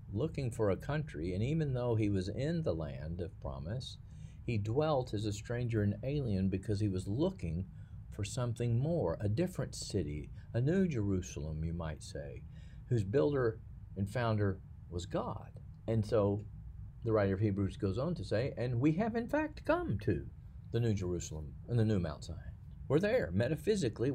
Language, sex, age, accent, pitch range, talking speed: English, male, 50-69, American, 95-125 Hz, 175 wpm